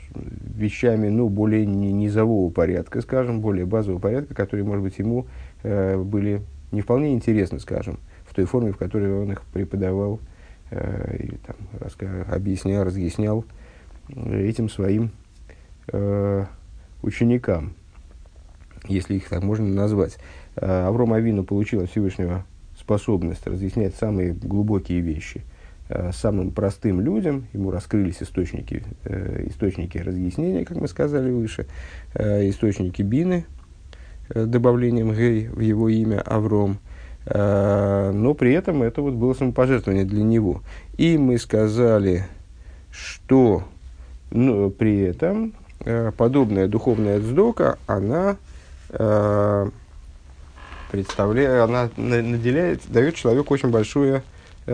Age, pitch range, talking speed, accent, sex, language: 50-69, 90-115 Hz, 110 wpm, native, male, Russian